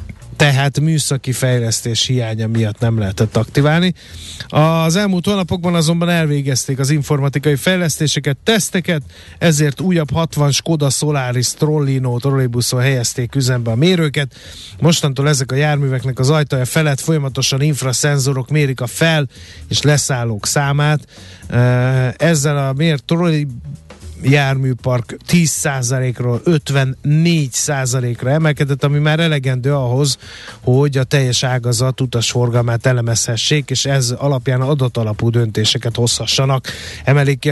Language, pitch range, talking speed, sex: Hungarian, 120-150 Hz, 110 wpm, male